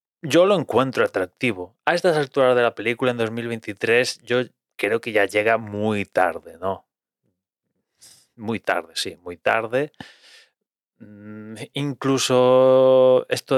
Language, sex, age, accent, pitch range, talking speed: Spanish, male, 30-49, Spanish, 105-140 Hz, 120 wpm